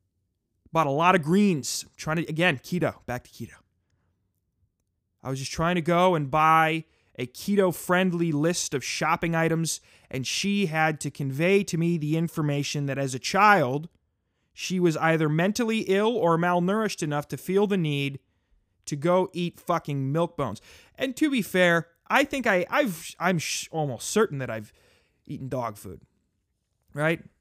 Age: 20-39